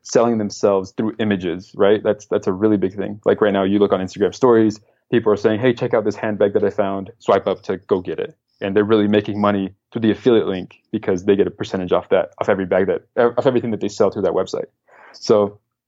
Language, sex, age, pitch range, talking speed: English, male, 20-39, 100-120 Hz, 240 wpm